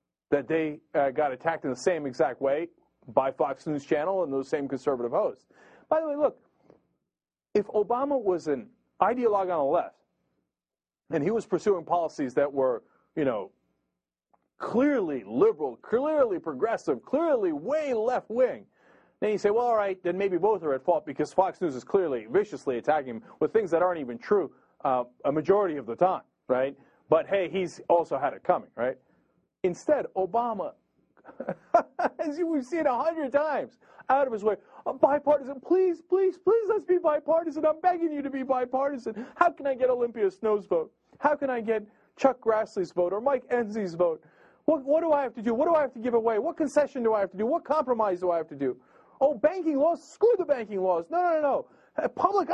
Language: English